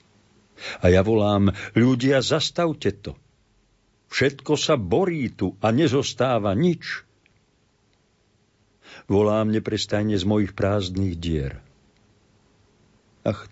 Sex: male